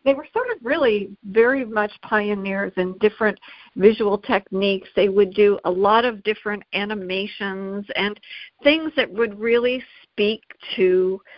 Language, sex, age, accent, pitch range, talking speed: English, female, 50-69, American, 195-245 Hz, 140 wpm